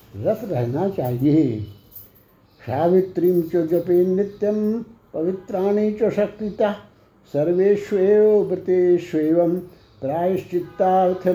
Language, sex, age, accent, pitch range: Hindi, male, 60-79, native, 150-185 Hz